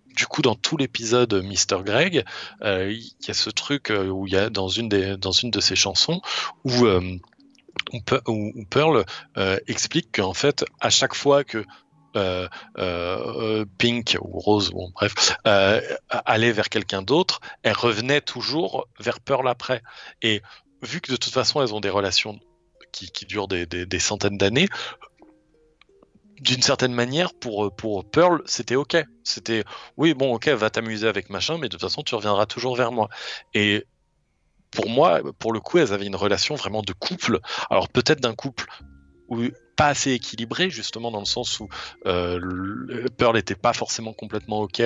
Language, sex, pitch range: French, male, 100-125 Hz